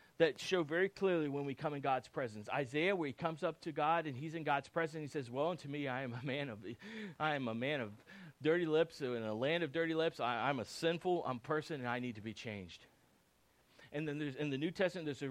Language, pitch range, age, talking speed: English, 140-220 Hz, 40-59, 265 wpm